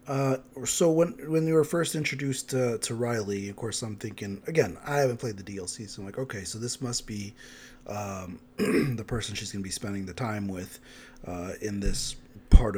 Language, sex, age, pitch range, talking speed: English, male, 30-49, 100-130 Hz, 210 wpm